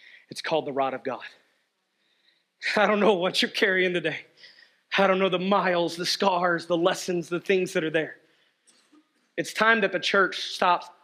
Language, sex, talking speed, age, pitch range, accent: English, male, 180 wpm, 30-49, 165-215 Hz, American